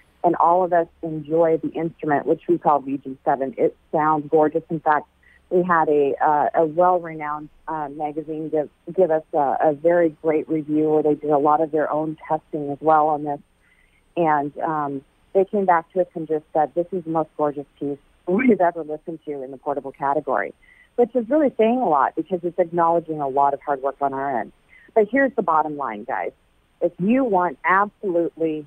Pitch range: 150-175 Hz